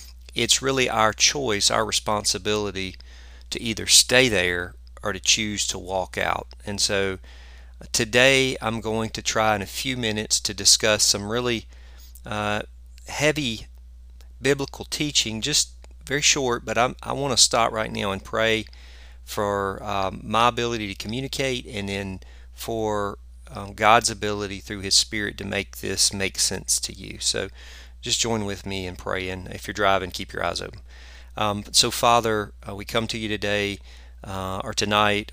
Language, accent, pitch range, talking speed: English, American, 75-110 Hz, 160 wpm